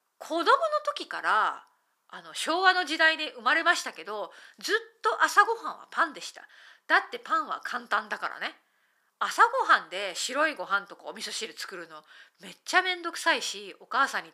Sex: female